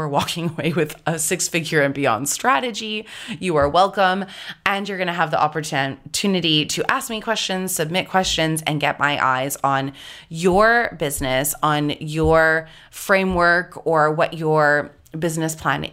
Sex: female